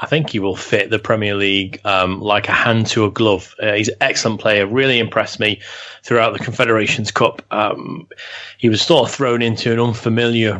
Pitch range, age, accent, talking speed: 105-120 Hz, 30-49, British, 205 wpm